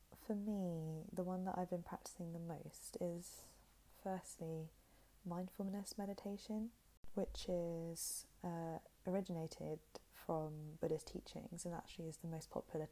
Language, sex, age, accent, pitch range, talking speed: English, female, 20-39, British, 160-185 Hz, 125 wpm